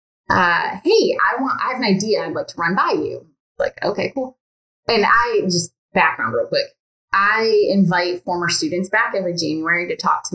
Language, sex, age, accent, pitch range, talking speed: English, female, 20-39, American, 160-210 Hz, 190 wpm